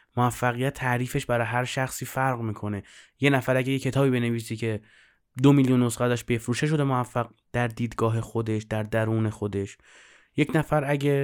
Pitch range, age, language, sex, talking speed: 115-145 Hz, 20-39, Persian, male, 160 wpm